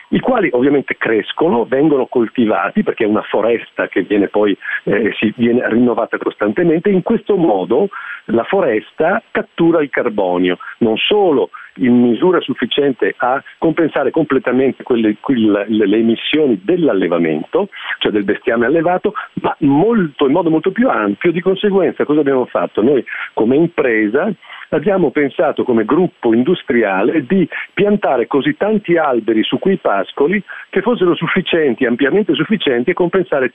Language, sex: Italian, male